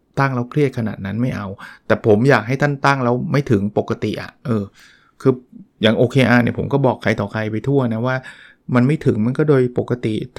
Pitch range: 115-145 Hz